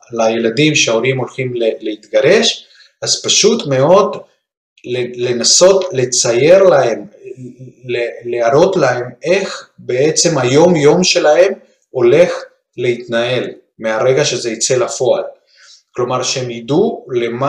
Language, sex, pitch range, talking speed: Hebrew, male, 115-175 Hz, 95 wpm